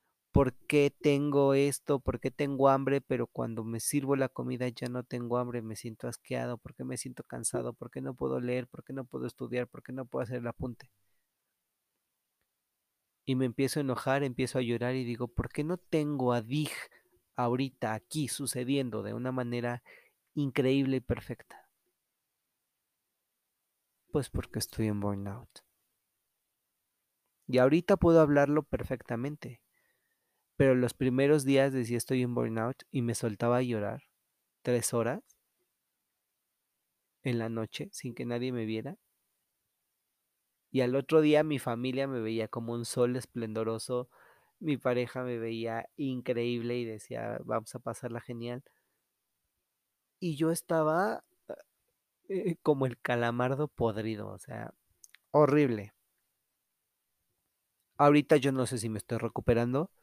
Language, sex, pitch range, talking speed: Spanish, male, 120-140 Hz, 145 wpm